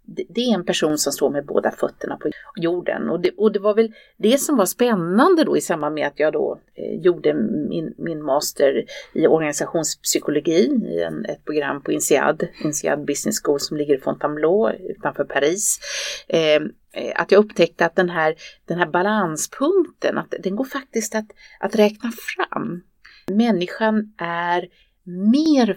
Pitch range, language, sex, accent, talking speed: 160-225 Hz, Swedish, female, native, 170 wpm